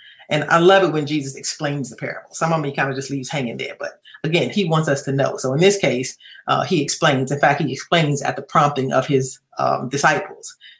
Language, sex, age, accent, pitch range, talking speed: English, female, 40-59, American, 135-170 Hz, 245 wpm